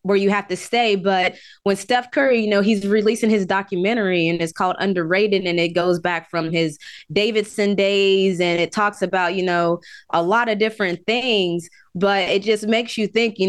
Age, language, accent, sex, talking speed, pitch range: 20-39, English, American, female, 200 wpm, 190-240 Hz